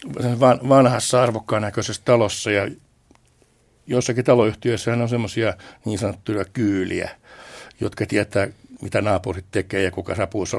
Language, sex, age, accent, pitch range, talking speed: Finnish, male, 60-79, native, 105-130 Hz, 115 wpm